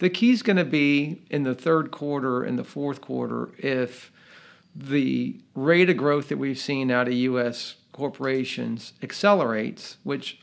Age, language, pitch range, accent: 50-69, English, 120-145 Hz, American